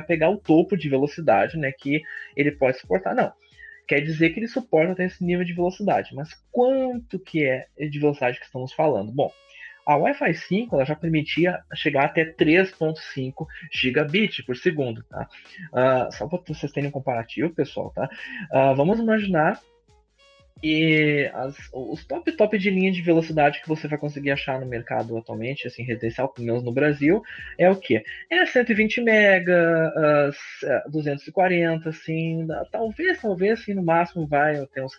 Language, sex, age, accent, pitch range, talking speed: Portuguese, male, 20-39, Brazilian, 125-175 Hz, 160 wpm